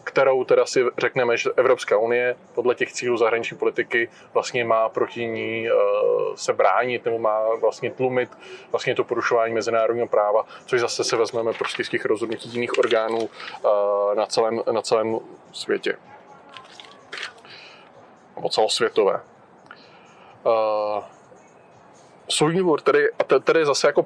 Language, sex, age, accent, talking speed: Czech, male, 20-39, native, 125 wpm